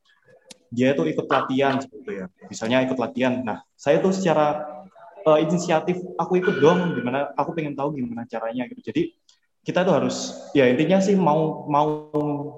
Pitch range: 125-170 Hz